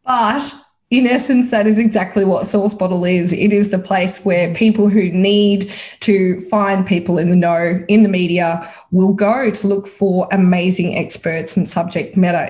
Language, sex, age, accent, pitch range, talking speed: English, female, 20-39, Australian, 185-230 Hz, 180 wpm